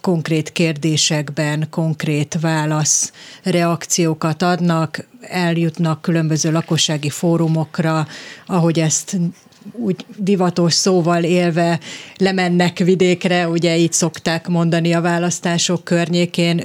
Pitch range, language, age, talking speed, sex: 160-180 Hz, Hungarian, 30-49, 90 wpm, female